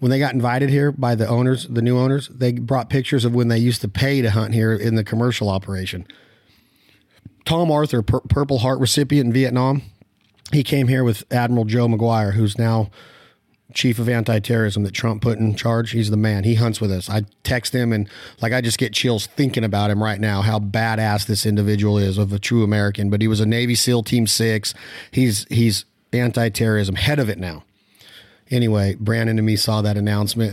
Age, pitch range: 40-59, 110-130 Hz